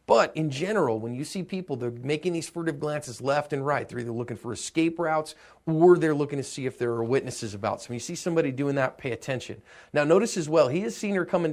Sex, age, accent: male, 40-59, American